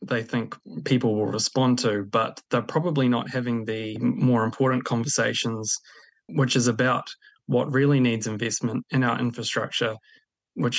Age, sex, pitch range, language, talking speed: 20-39, male, 110-125 Hz, English, 145 wpm